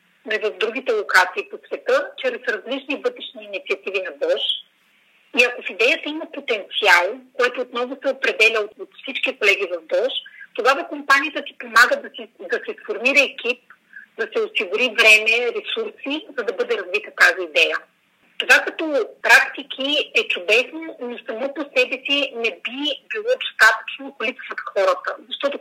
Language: Bulgarian